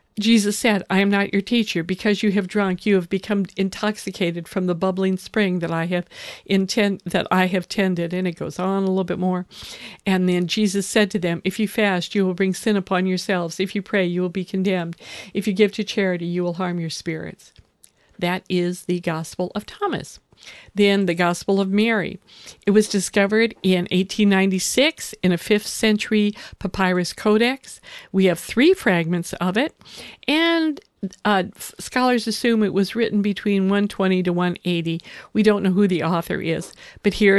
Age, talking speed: 50-69, 185 wpm